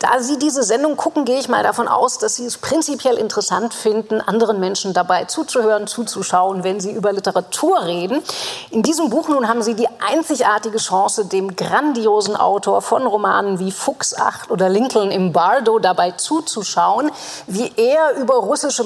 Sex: female